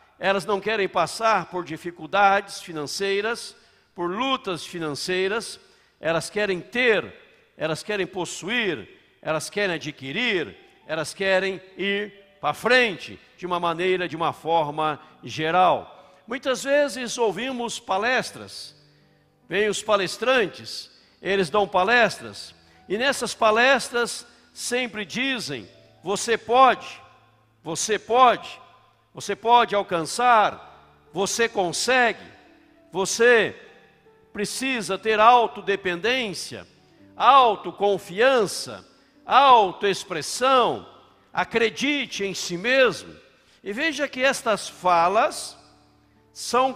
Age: 60-79